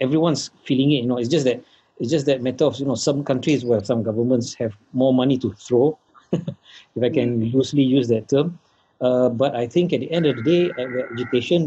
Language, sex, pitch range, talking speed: English, male, 120-140 Hz, 220 wpm